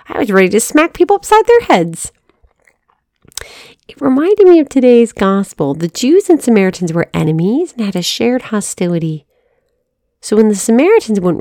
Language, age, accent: English, 40-59, American